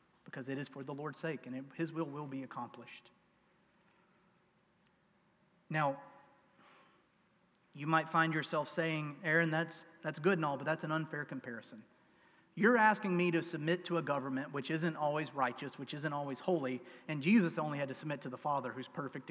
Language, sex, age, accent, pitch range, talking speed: English, male, 40-59, American, 140-185 Hz, 180 wpm